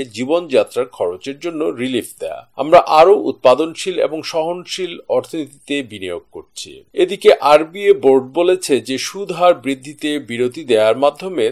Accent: native